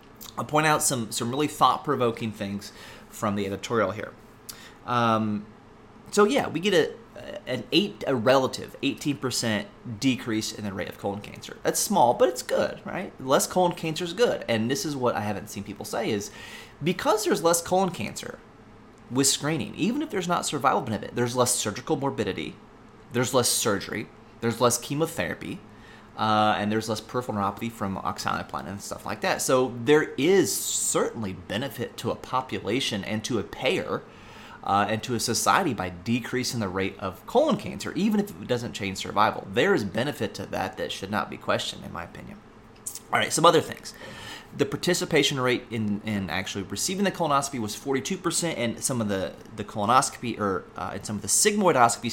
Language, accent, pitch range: English, American, 105-145 Hz